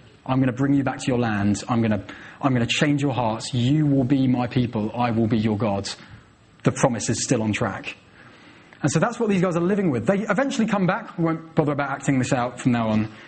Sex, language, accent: male, English, British